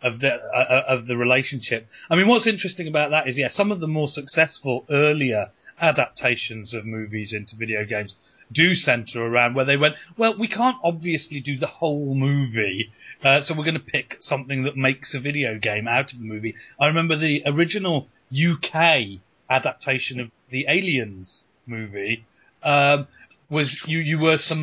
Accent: British